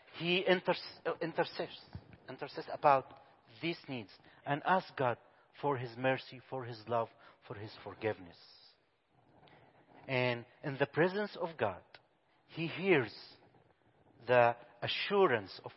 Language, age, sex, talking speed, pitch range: English, 40-59, male, 105 wpm, 125-175 Hz